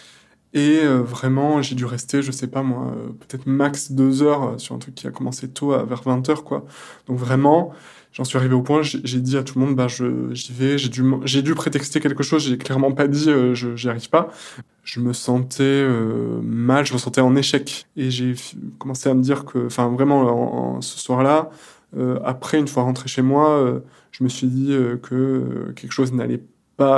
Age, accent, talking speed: 20-39, French, 225 wpm